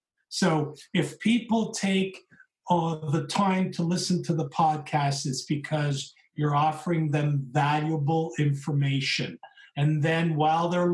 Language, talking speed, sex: English, 120 wpm, male